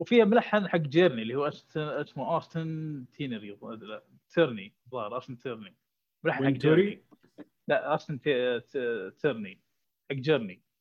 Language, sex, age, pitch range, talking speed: Arabic, male, 20-39, 140-185 Hz, 115 wpm